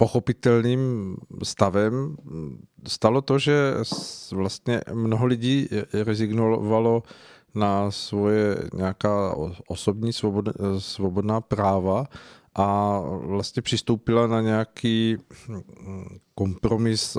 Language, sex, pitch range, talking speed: Czech, male, 95-115 Hz, 75 wpm